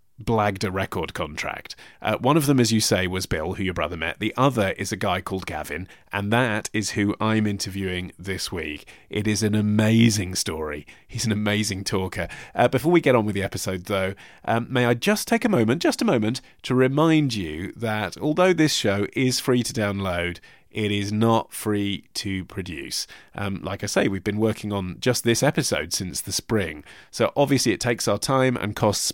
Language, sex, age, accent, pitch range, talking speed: English, male, 30-49, British, 95-120 Hz, 205 wpm